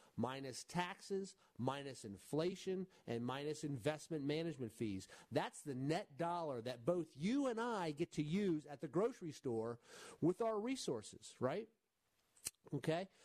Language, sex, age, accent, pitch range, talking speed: English, male, 40-59, American, 115-150 Hz, 135 wpm